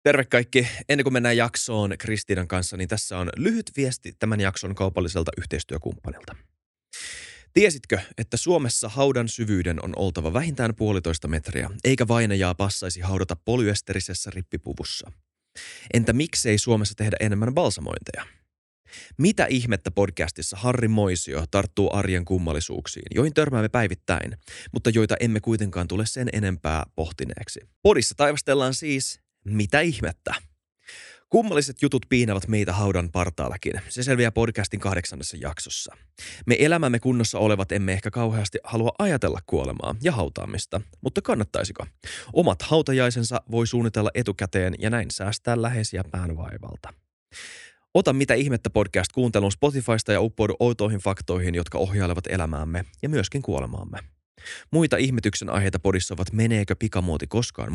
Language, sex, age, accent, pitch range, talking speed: Finnish, male, 20-39, native, 95-120 Hz, 125 wpm